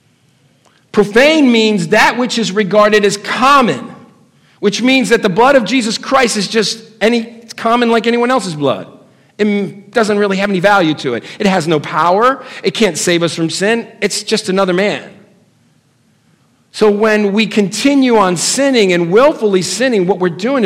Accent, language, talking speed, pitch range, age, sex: American, English, 170 wpm, 175-235 Hz, 50-69, male